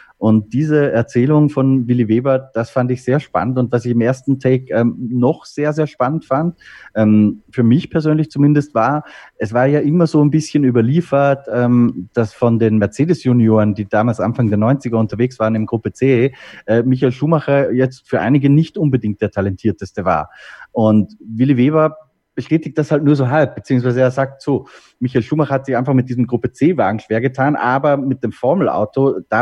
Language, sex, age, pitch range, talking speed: German, male, 30-49, 110-135 Hz, 190 wpm